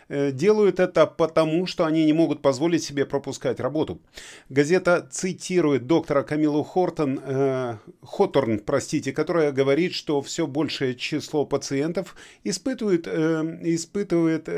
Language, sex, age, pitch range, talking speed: Russian, male, 30-49, 125-160 Hz, 110 wpm